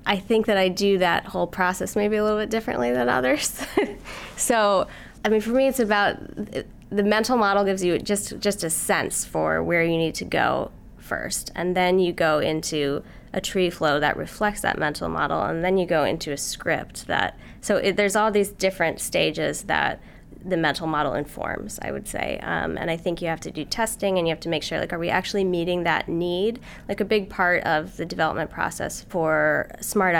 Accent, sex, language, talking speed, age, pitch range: American, female, English, 210 wpm, 20-39, 155-205 Hz